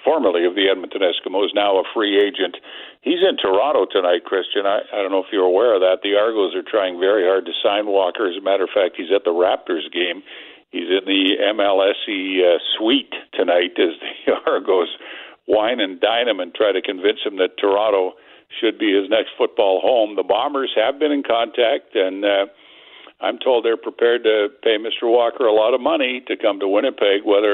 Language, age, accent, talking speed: English, 60-79, American, 205 wpm